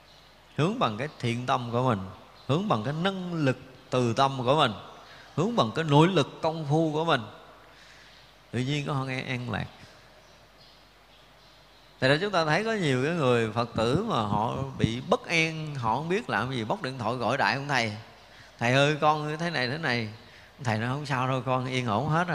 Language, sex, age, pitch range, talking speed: Vietnamese, male, 30-49, 120-160 Hz, 205 wpm